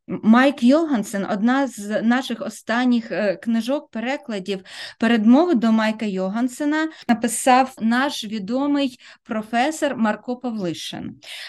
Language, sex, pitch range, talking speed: Ukrainian, female, 210-255 Hz, 90 wpm